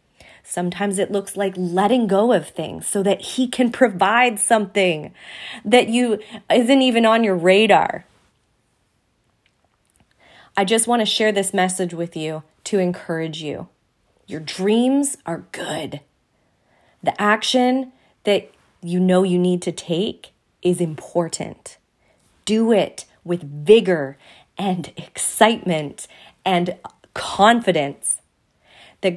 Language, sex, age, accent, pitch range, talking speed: English, female, 30-49, American, 170-210 Hz, 115 wpm